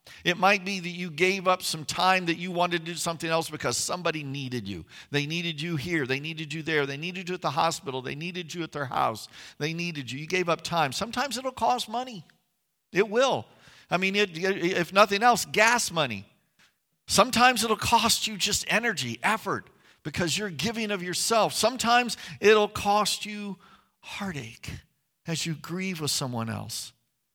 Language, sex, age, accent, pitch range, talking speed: English, male, 50-69, American, 140-205 Hz, 180 wpm